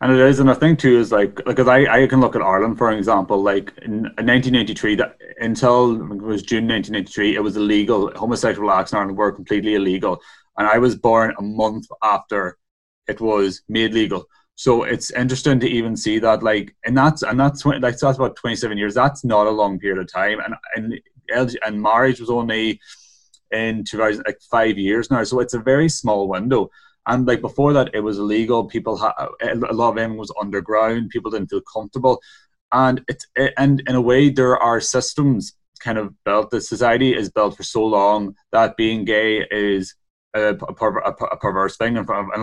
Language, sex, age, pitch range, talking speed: English, male, 20-39, 105-125 Hz, 210 wpm